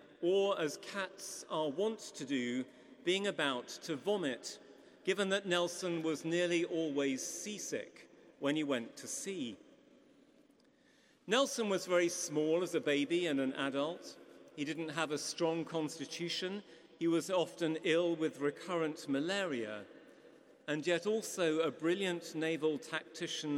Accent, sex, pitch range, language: British, male, 150-195 Hz, English